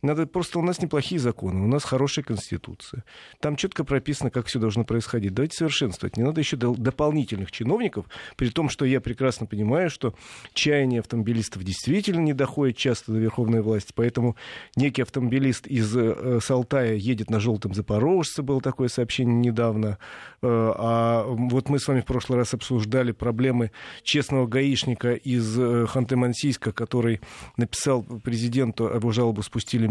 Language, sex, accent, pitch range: Russian, male, native, 115-135 Hz